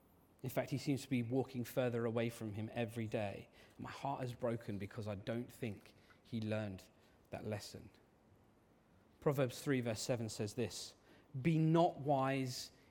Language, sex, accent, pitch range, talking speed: English, male, British, 110-145 Hz, 160 wpm